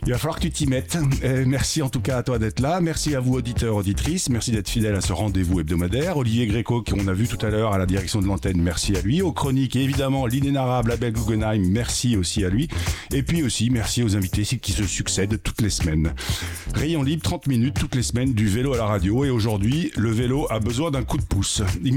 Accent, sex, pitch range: French, male, 105-130 Hz